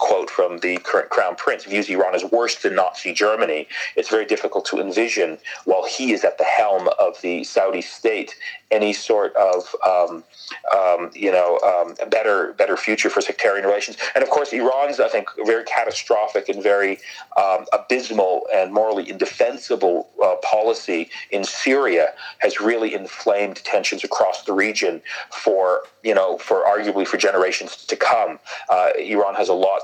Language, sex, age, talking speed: English, male, 40-59, 165 wpm